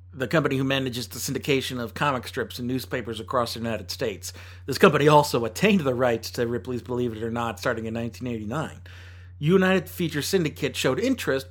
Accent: American